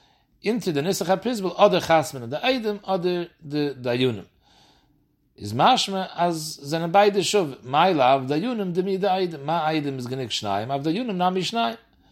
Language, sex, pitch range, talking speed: English, male, 140-190 Hz, 170 wpm